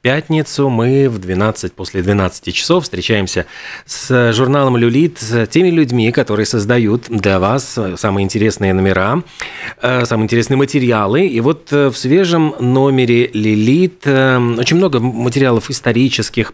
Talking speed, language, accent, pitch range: 125 wpm, Russian, native, 110-130 Hz